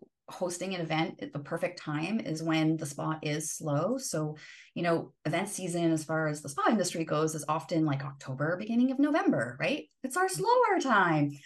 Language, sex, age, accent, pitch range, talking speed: English, female, 30-49, American, 145-180 Hz, 195 wpm